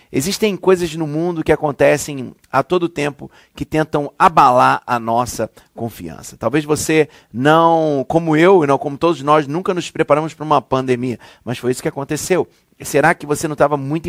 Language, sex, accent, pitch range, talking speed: Portuguese, male, Brazilian, 130-175 Hz, 180 wpm